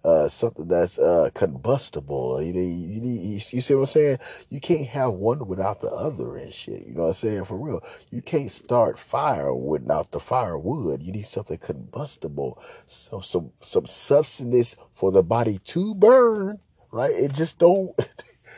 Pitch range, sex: 105-170 Hz, male